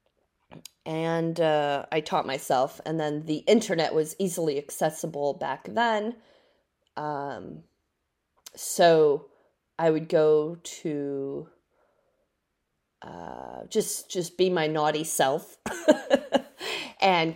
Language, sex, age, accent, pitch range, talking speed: English, female, 30-49, American, 140-185 Hz, 95 wpm